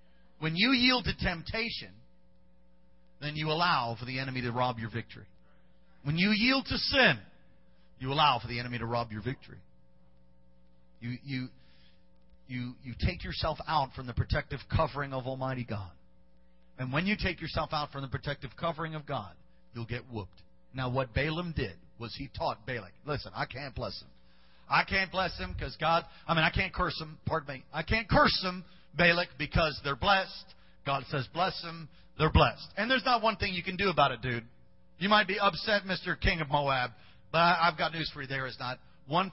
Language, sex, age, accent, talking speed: English, male, 40-59, American, 195 wpm